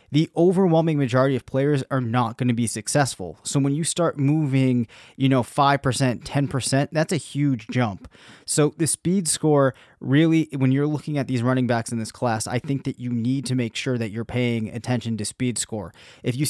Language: English